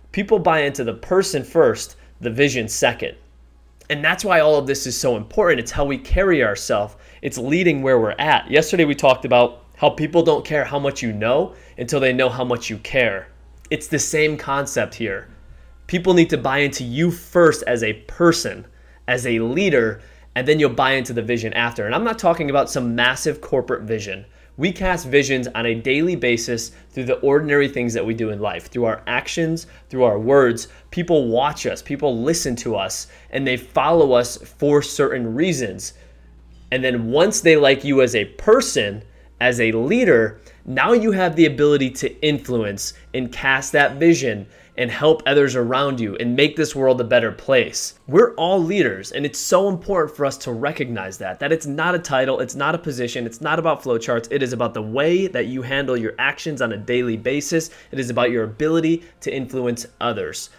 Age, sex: 20-39, male